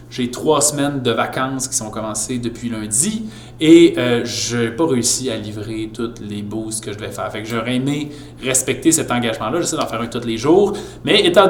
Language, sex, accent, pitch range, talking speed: French, male, Canadian, 115-135 Hz, 215 wpm